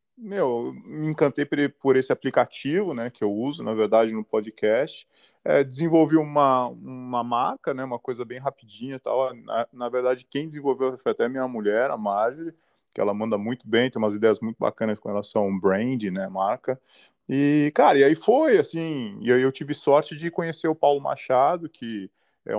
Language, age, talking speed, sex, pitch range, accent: Portuguese, 20-39, 185 wpm, male, 110-155 Hz, Brazilian